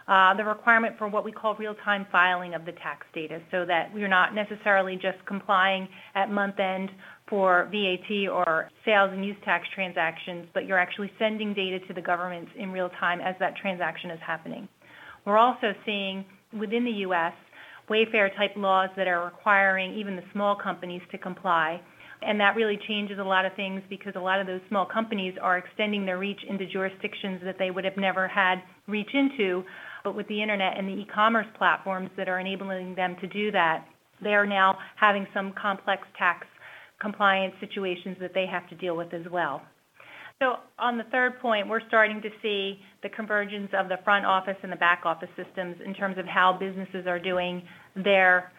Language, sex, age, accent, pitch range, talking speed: English, female, 30-49, American, 180-205 Hz, 190 wpm